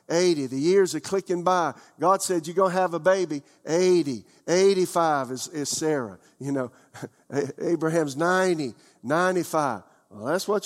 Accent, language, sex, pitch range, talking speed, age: American, English, male, 130-190 Hz, 150 wpm, 50-69